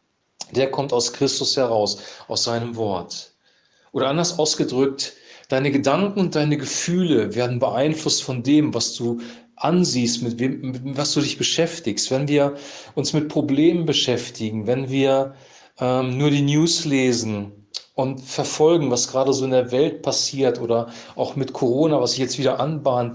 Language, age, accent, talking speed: German, 40-59, German, 160 wpm